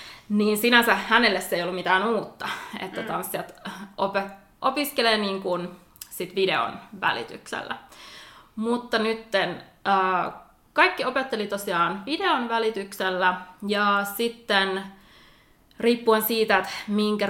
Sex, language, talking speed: female, Finnish, 110 wpm